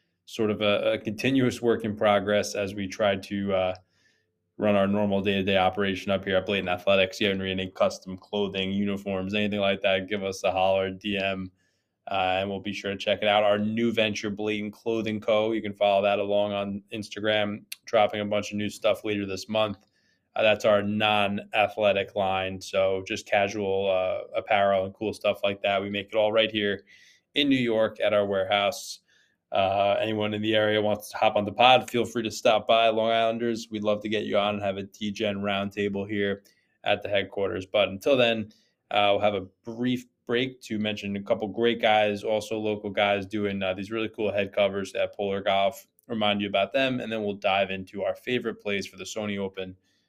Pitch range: 95-110 Hz